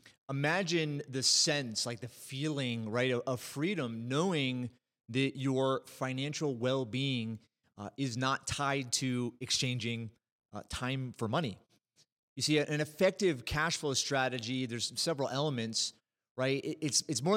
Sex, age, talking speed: male, 30-49, 130 wpm